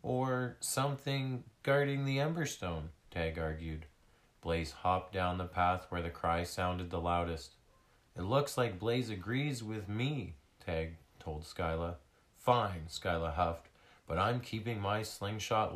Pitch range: 90-120 Hz